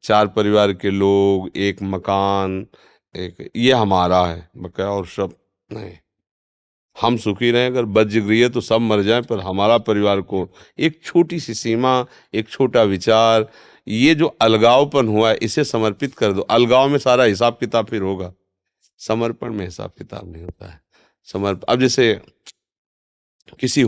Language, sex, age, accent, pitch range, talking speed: Hindi, male, 40-59, native, 95-120 Hz, 155 wpm